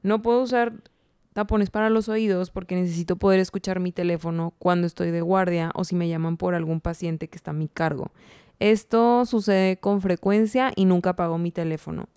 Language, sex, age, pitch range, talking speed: Spanish, female, 20-39, 175-200 Hz, 185 wpm